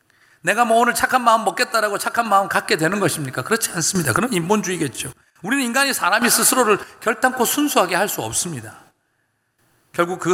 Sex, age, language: male, 40-59, Korean